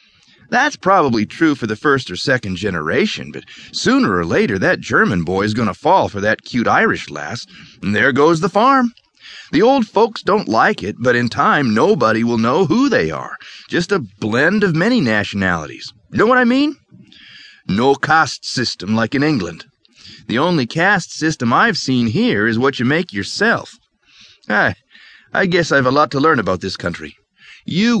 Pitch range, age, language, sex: 100-140 Hz, 40-59, English, male